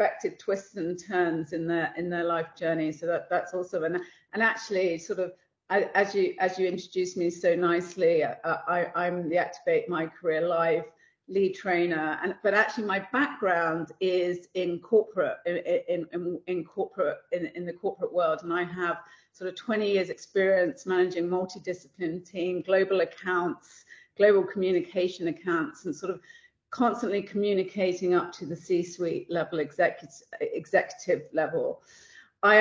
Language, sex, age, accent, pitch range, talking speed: English, female, 40-59, British, 175-210 Hz, 155 wpm